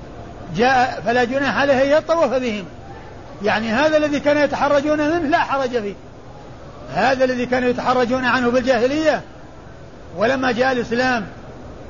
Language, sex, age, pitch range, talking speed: Arabic, male, 50-69, 220-265 Hz, 120 wpm